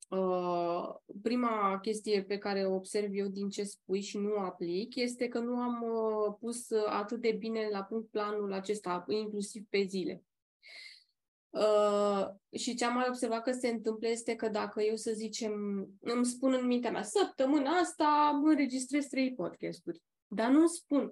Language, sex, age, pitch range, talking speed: Romanian, female, 20-39, 200-235 Hz, 165 wpm